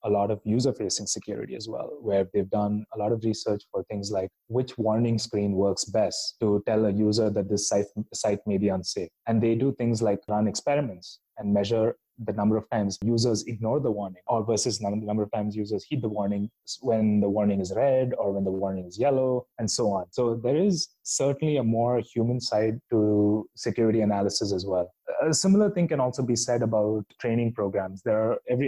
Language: English